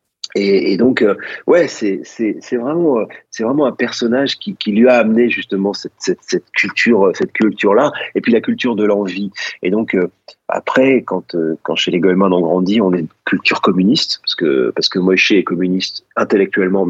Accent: French